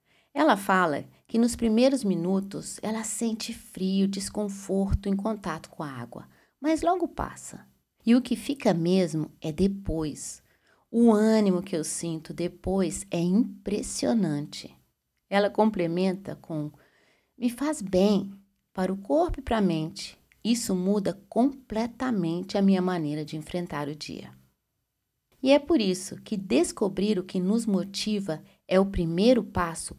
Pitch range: 160-220 Hz